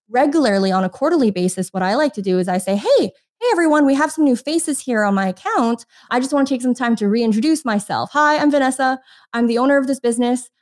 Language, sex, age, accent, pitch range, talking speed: English, female, 20-39, American, 200-275 Hz, 250 wpm